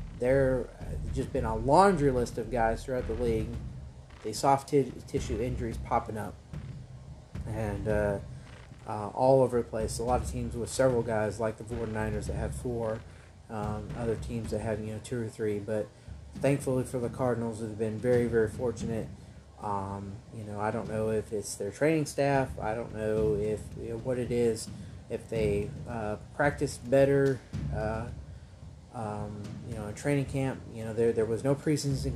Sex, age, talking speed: male, 30-49, 185 wpm